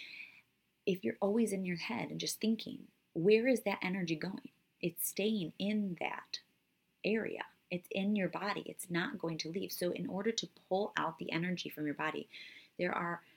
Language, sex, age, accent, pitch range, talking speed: English, female, 30-49, American, 150-205 Hz, 185 wpm